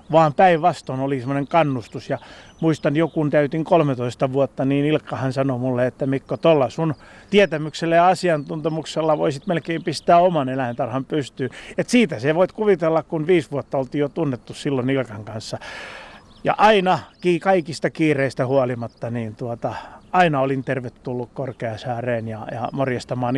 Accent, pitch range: native, 130-160 Hz